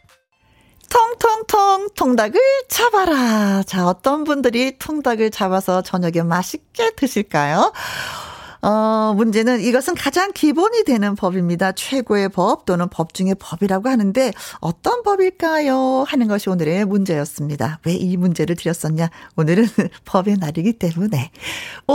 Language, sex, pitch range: Korean, female, 195-295 Hz